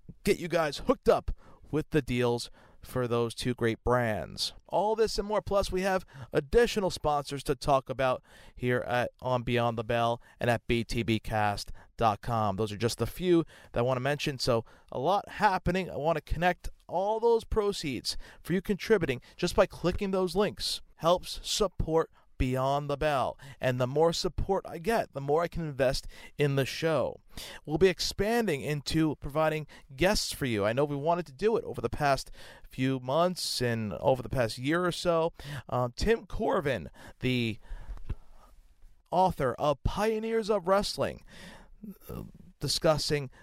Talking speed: 165 wpm